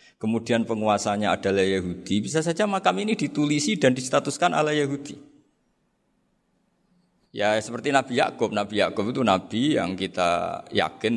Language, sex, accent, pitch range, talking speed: Indonesian, male, native, 100-145 Hz, 130 wpm